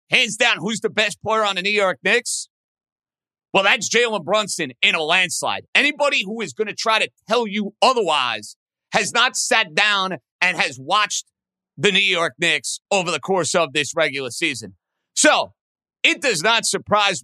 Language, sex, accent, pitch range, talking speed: English, male, American, 170-220 Hz, 180 wpm